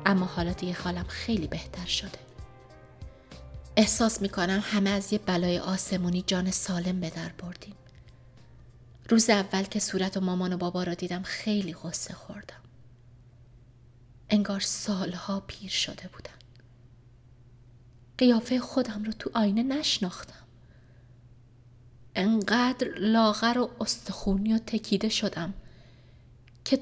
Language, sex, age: Persian, female, 30-49